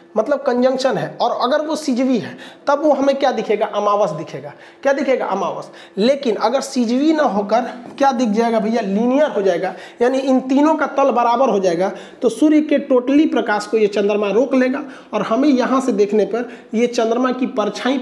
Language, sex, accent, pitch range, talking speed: Hindi, male, native, 215-275 Hz, 195 wpm